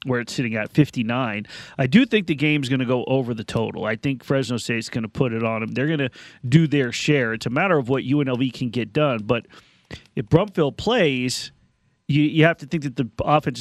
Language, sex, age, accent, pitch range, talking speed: English, male, 40-59, American, 130-165 Hz, 235 wpm